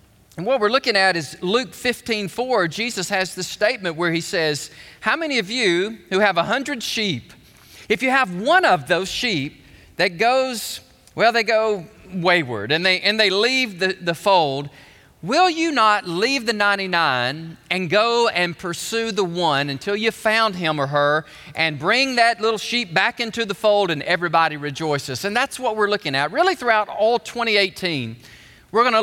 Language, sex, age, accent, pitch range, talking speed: English, male, 40-59, American, 160-215 Hz, 185 wpm